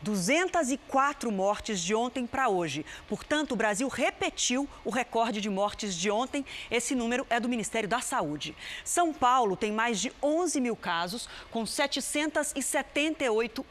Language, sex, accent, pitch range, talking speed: Portuguese, female, Brazilian, 215-285 Hz, 145 wpm